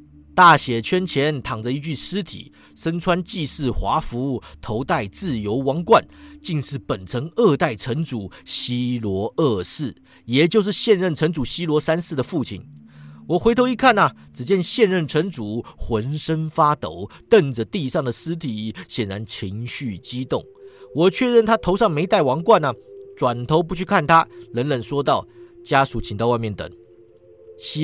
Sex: male